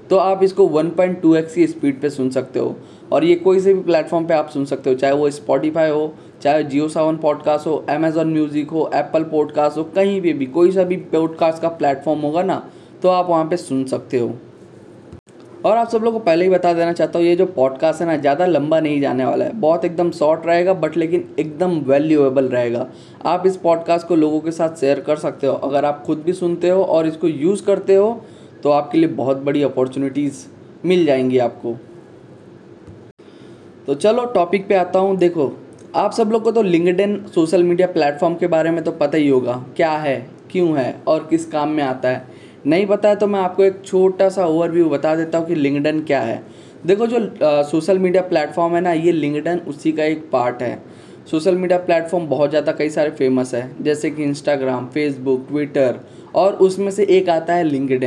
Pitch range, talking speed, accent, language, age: 145-180 Hz, 210 wpm, native, Hindi, 10-29